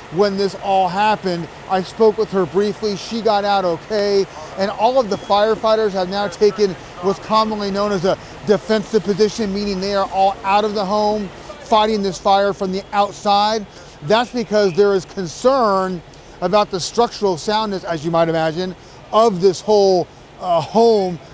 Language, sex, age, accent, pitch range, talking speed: English, male, 40-59, American, 180-210 Hz, 170 wpm